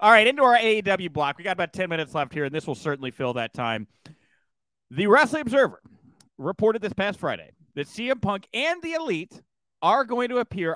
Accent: American